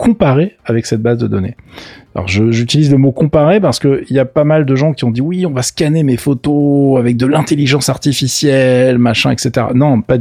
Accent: French